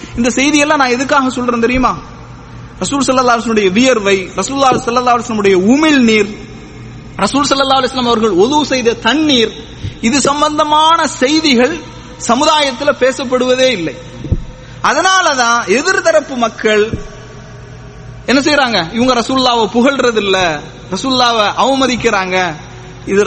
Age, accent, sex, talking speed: 30-49, Indian, male, 145 wpm